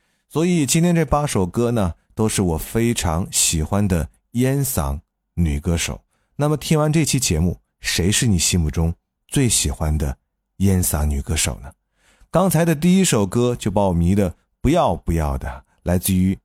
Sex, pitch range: male, 80-120 Hz